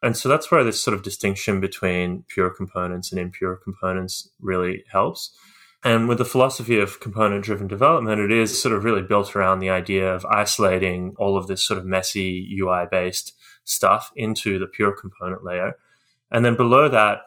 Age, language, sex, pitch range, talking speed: 20-39, English, male, 95-110 Hz, 175 wpm